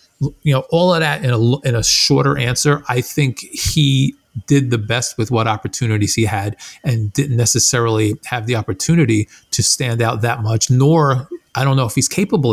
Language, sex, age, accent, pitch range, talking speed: English, male, 40-59, American, 110-130 Hz, 190 wpm